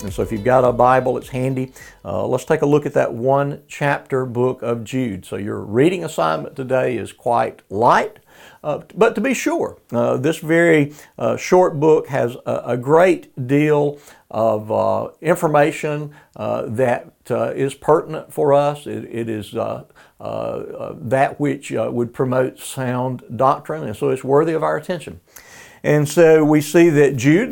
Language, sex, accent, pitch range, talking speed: English, male, American, 115-145 Hz, 175 wpm